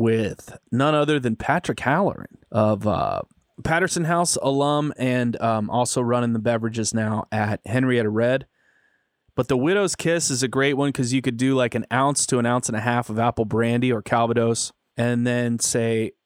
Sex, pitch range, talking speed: male, 115-140 Hz, 185 wpm